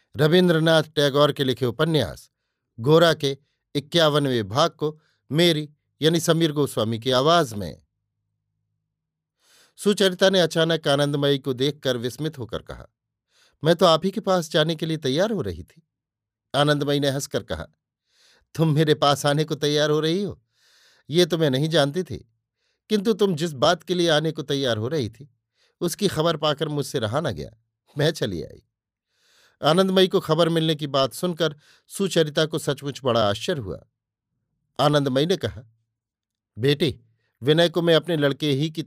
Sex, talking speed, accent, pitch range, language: male, 160 wpm, native, 125-160 Hz, Hindi